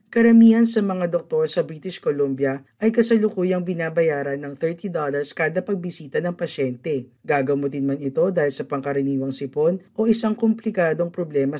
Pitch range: 140-195 Hz